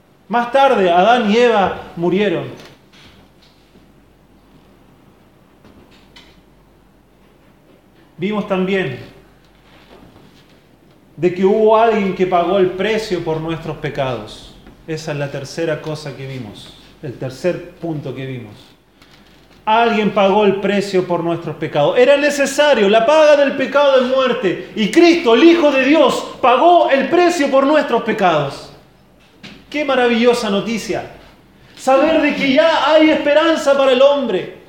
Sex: male